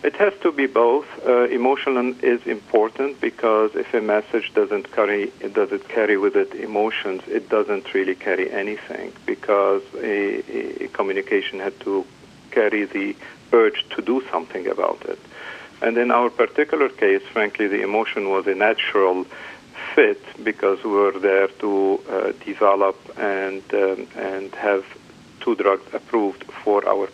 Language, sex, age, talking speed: English, male, 50-69, 150 wpm